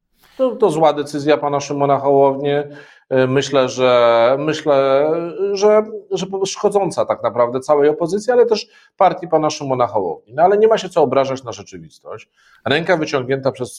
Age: 40-59